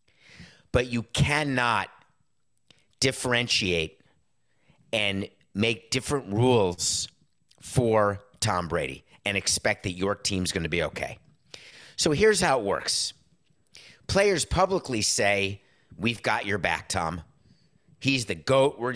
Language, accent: English, American